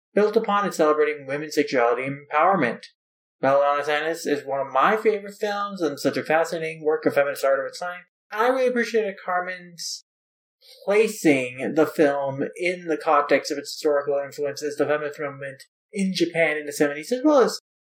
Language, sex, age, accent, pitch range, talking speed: English, male, 20-39, American, 145-200 Hz, 175 wpm